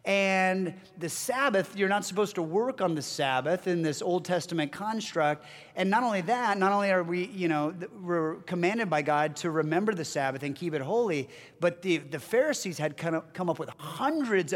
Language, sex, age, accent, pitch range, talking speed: English, male, 30-49, American, 155-205 Hz, 200 wpm